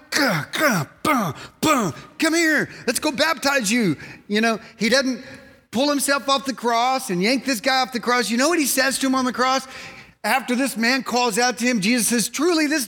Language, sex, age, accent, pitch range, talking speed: English, male, 40-59, American, 155-220 Hz, 200 wpm